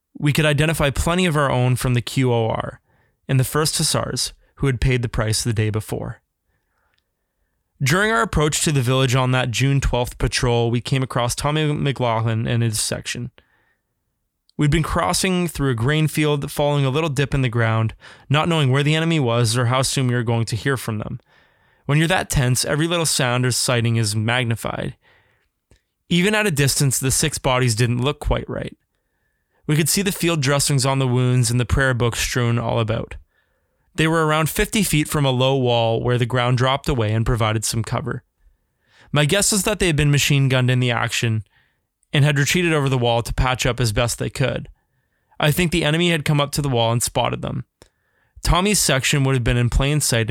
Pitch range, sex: 120-150 Hz, male